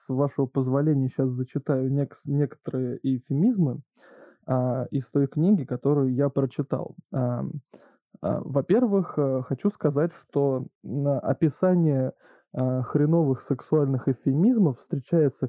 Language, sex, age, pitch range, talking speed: Russian, male, 20-39, 135-170 Hz, 105 wpm